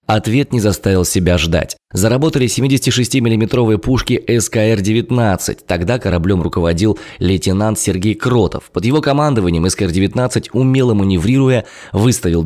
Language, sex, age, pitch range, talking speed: Russian, male, 20-39, 85-115 Hz, 110 wpm